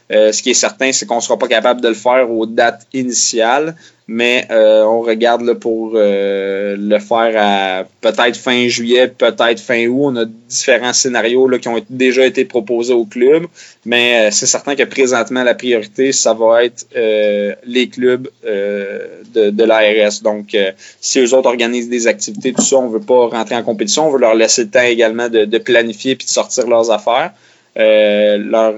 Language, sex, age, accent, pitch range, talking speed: French, male, 20-39, Canadian, 110-125 Hz, 200 wpm